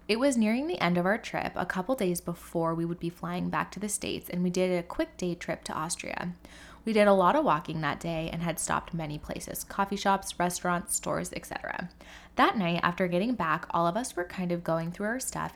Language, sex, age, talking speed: English, female, 10-29, 240 wpm